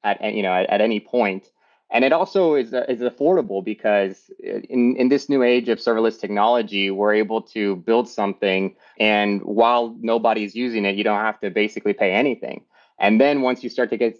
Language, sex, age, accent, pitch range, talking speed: English, male, 30-49, American, 100-120 Hz, 195 wpm